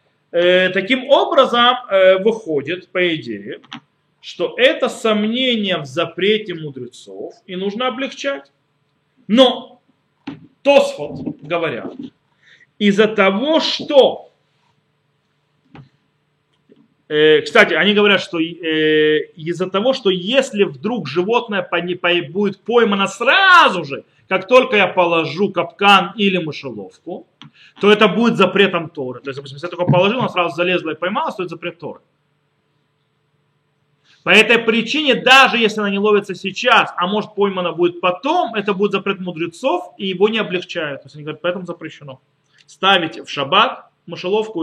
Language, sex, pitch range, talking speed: Russian, male, 155-215 Hz, 130 wpm